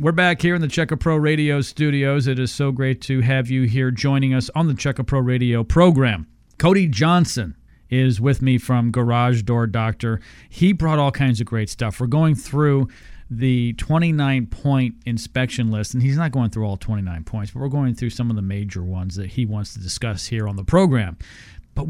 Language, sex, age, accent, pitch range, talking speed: English, male, 40-59, American, 110-145 Hz, 205 wpm